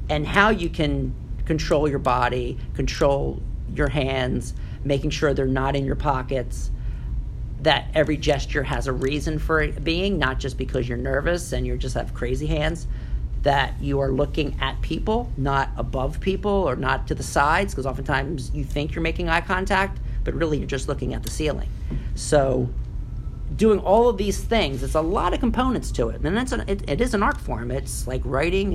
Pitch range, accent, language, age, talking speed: 130-155 Hz, American, English, 50-69, 190 wpm